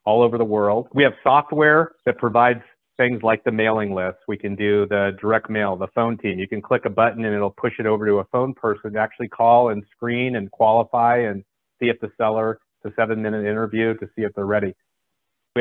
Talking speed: 225 wpm